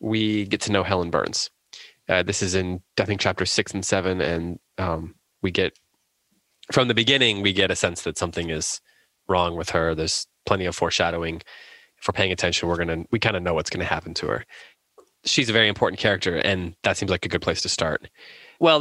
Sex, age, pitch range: male, 20-39, 95-120 Hz